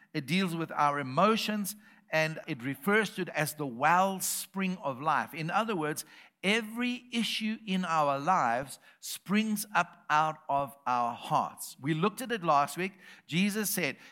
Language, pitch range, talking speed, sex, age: English, 160-210 Hz, 155 wpm, male, 60-79